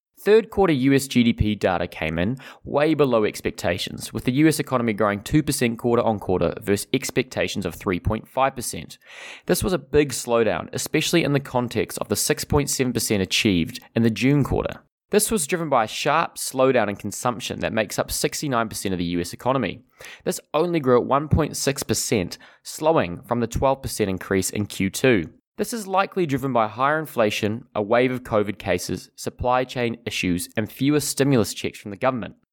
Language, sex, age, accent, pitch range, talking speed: English, male, 20-39, Australian, 110-150 Hz, 170 wpm